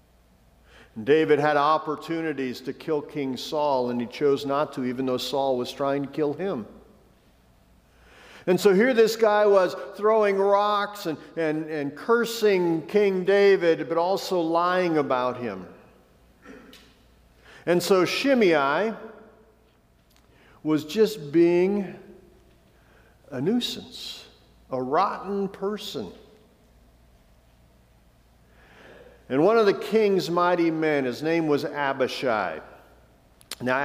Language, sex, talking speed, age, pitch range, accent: English, male, 110 wpm, 50-69, 125-185 Hz, American